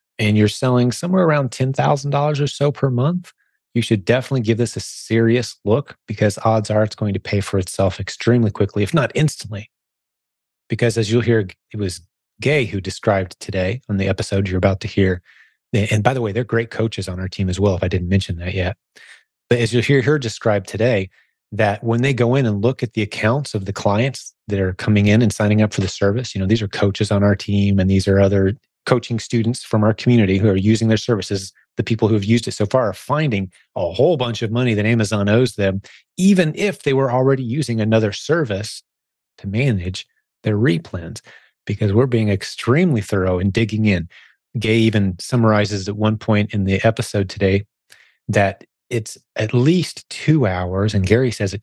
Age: 30-49